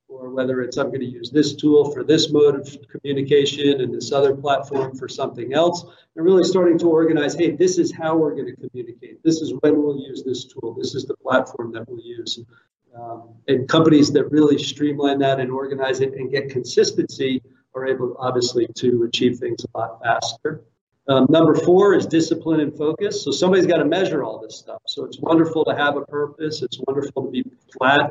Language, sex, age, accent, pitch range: Chinese, male, 50-69, American, 135-160 Hz